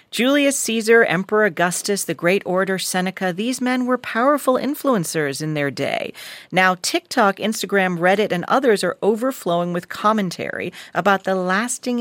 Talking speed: 145 wpm